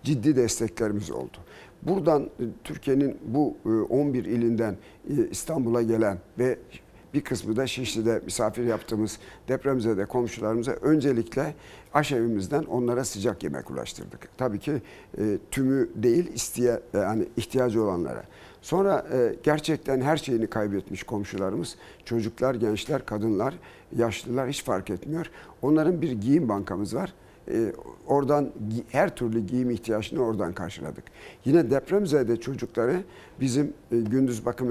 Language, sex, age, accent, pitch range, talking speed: Turkish, male, 60-79, native, 110-135 Hz, 110 wpm